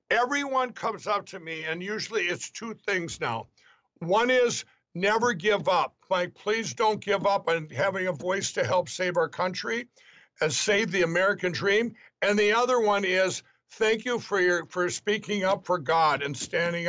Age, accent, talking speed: 60-79, American, 180 wpm